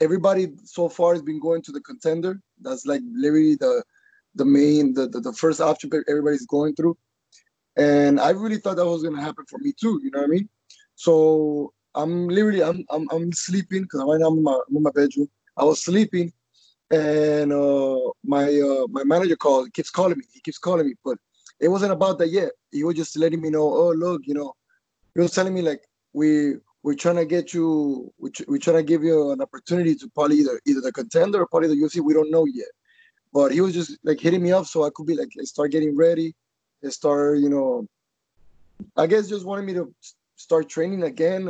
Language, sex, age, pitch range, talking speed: English, male, 20-39, 150-185 Hz, 215 wpm